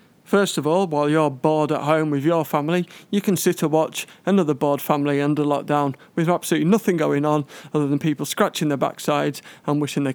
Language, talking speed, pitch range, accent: English, 205 wpm, 145-170 Hz, British